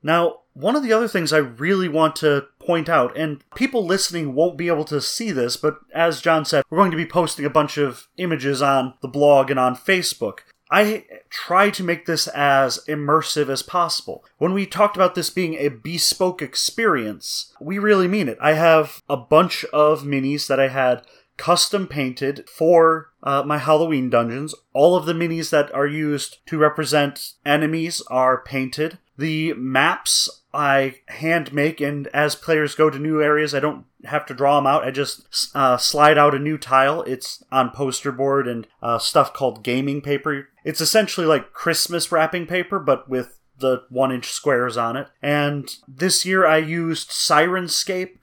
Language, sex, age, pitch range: English, male, 30-49, 140-170 Hz